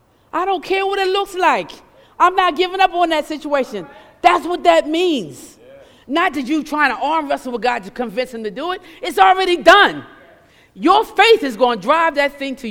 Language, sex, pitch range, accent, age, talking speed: English, female, 250-355 Hz, American, 50-69, 210 wpm